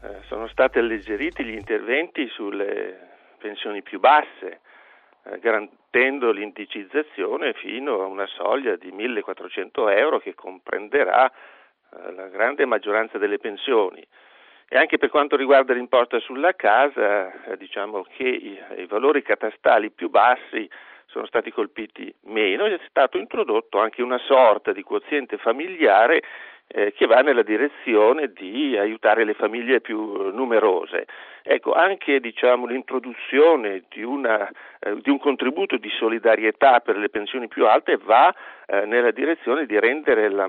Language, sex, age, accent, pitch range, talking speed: Italian, male, 50-69, native, 285-445 Hz, 140 wpm